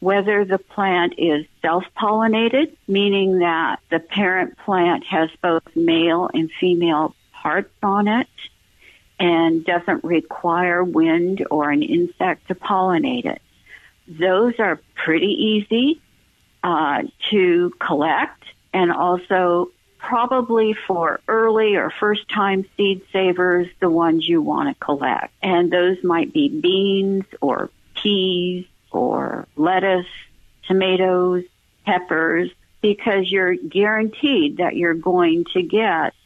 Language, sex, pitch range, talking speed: English, female, 175-225 Hz, 115 wpm